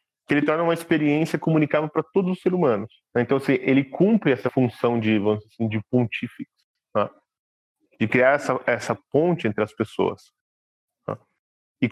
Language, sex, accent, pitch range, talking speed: Portuguese, male, Brazilian, 110-160 Hz, 170 wpm